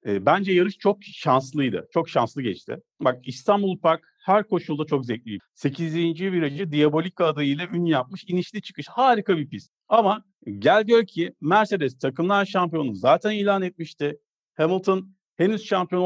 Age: 50-69